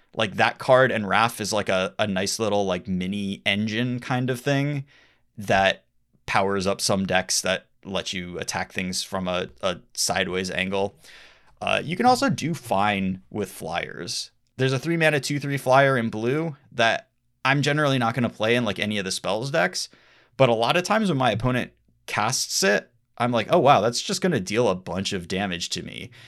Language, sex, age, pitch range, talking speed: English, male, 20-39, 95-125 Hz, 200 wpm